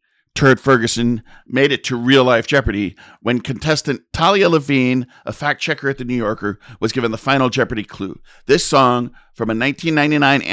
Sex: male